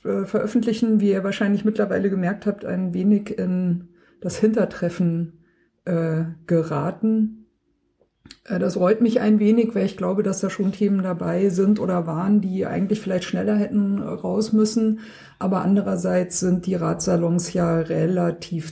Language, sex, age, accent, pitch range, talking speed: German, female, 50-69, German, 175-215 Hz, 145 wpm